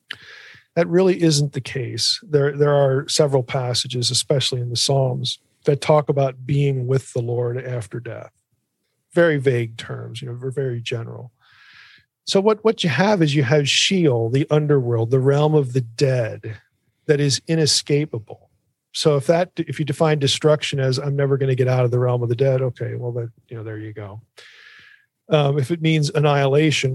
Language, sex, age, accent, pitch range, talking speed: English, male, 40-59, American, 125-150 Hz, 185 wpm